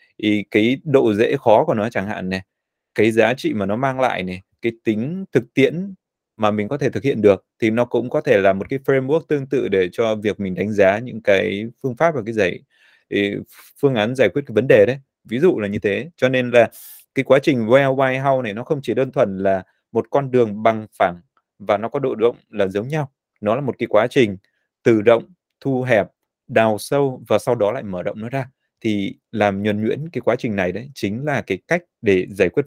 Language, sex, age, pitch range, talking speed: Vietnamese, male, 20-39, 105-140 Hz, 240 wpm